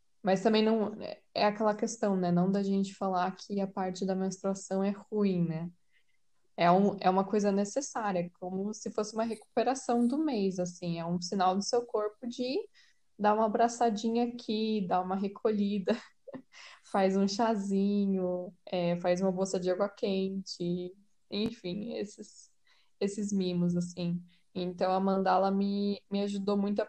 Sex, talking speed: female, 155 wpm